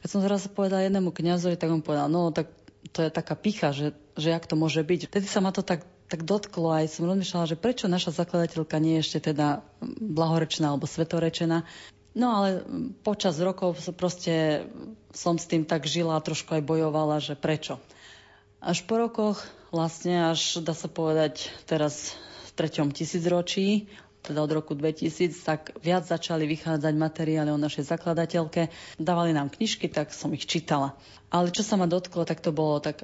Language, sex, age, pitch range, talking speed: Slovak, female, 30-49, 155-180 Hz, 180 wpm